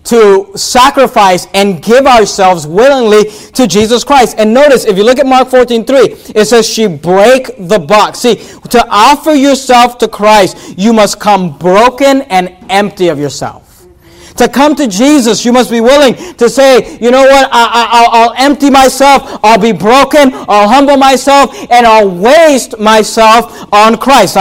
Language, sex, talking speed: English, male, 165 wpm